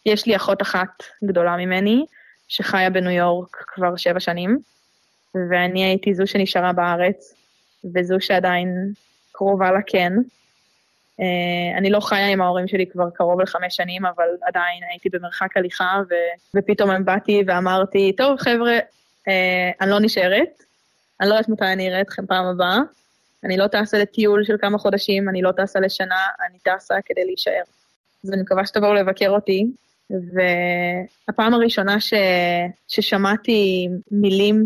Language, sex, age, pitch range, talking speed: Hebrew, female, 20-39, 185-220 Hz, 130 wpm